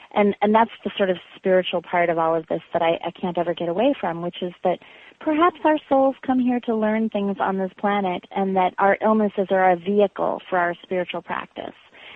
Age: 30-49